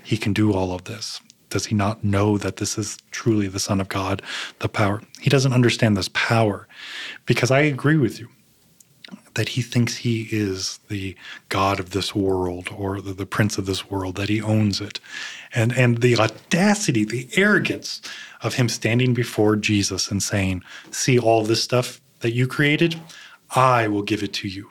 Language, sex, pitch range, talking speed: English, male, 100-125 Hz, 185 wpm